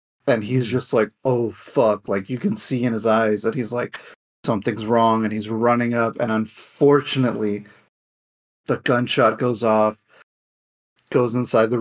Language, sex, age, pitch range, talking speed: English, male, 30-49, 115-135 Hz, 160 wpm